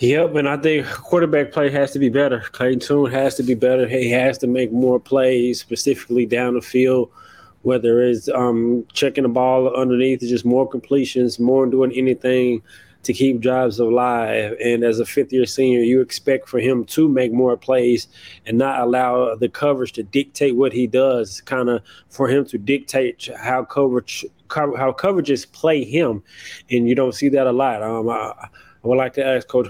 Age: 20-39